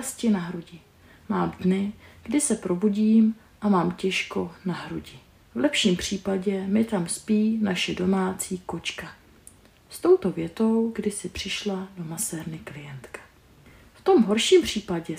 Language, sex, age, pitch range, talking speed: Czech, female, 30-49, 180-225 Hz, 135 wpm